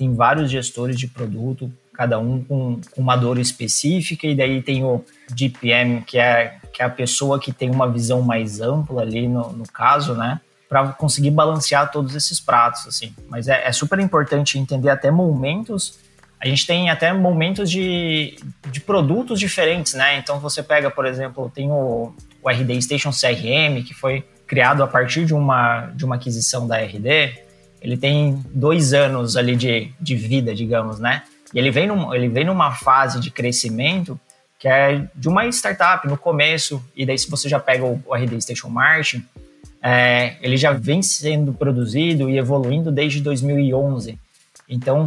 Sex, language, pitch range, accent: male, Portuguese, 125-150 Hz, Brazilian